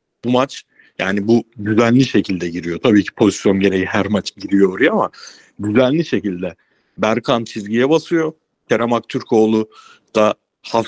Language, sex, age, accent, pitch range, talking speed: Turkish, male, 60-79, native, 105-125 Hz, 140 wpm